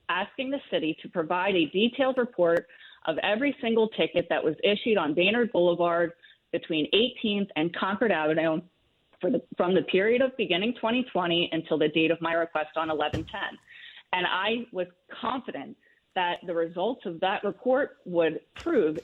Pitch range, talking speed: 165-225 Hz, 160 wpm